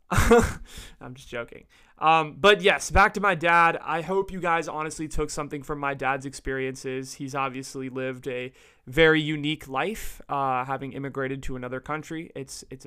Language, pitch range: English, 130-160 Hz